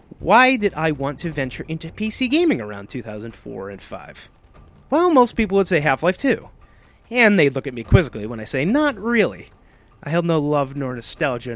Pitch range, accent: 120-170 Hz, American